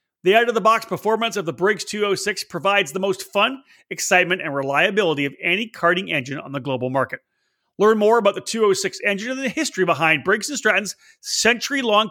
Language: English